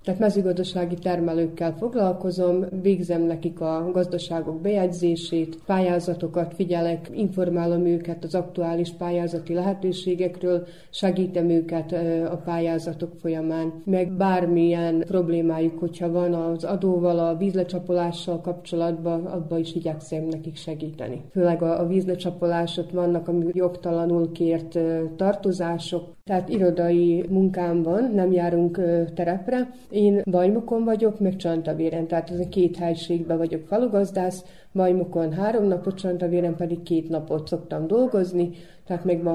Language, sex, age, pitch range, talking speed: Hungarian, female, 30-49, 165-180 Hz, 115 wpm